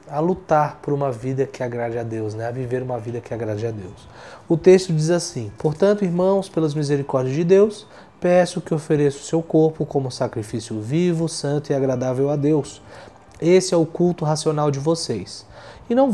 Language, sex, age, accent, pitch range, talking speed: Portuguese, male, 20-39, Brazilian, 115-155 Hz, 185 wpm